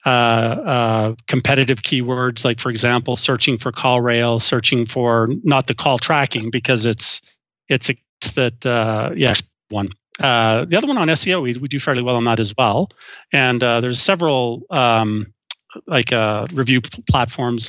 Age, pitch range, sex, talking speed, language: 40-59, 115-135 Hz, male, 175 wpm, English